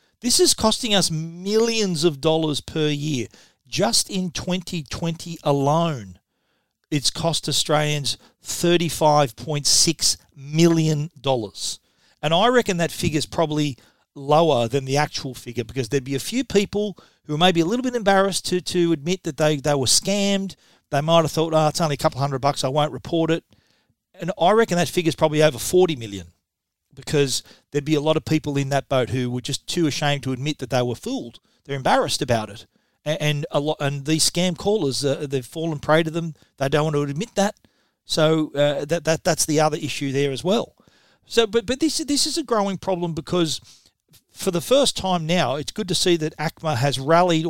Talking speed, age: 190 wpm, 40-59